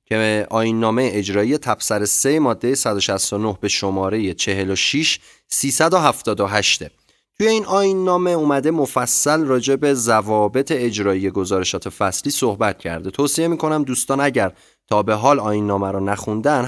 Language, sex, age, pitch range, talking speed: Persian, male, 30-49, 105-145 Hz, 120 wpm